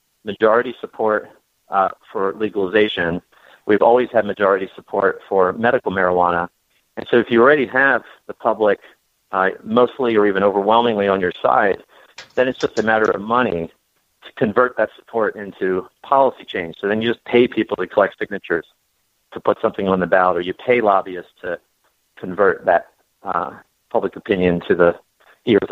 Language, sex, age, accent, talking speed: English, male, 40-59, American, 165 wpm